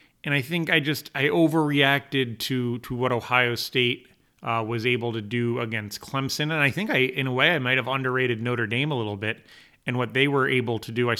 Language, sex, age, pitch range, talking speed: English, male, 30-49, 105-130 Hz, 230 wpm